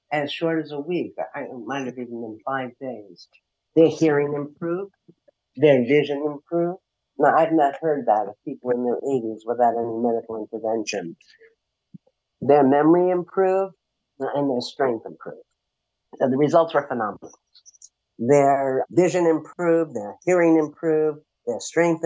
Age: 50-69